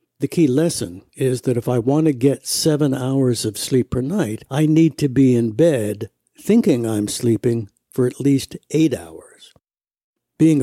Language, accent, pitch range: English, American, 115-145 Hz